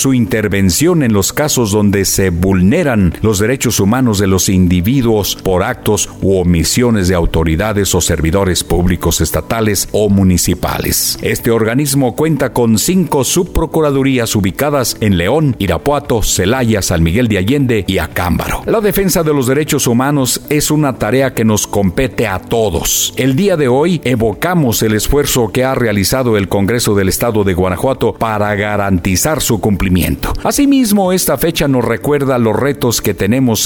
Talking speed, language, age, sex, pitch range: 155 wpm, Spanish, 50-69, male, 95-135 Hz